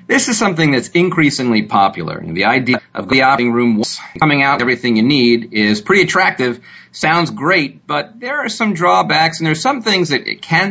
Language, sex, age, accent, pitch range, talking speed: English, male, 40-59, American, 115-180 Hz, 190 wpm